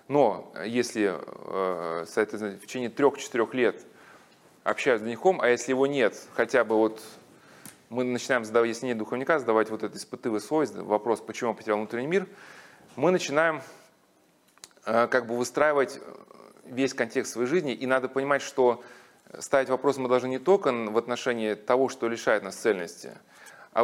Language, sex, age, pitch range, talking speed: Russian, male, 20-39, 115-140 Hz, 150 wpm